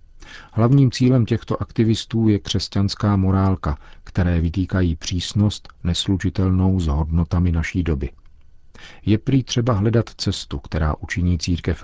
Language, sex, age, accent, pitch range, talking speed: Czech, male, 40-59, native, 85-100 Hz, 115 wpm